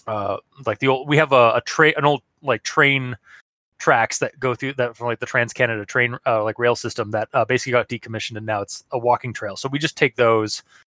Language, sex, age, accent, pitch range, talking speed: English, male, 20-39, American, 120-160 Hz, 245 wpm